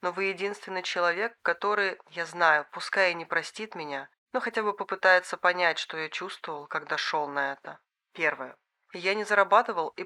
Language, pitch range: Russian, 160-195 Hz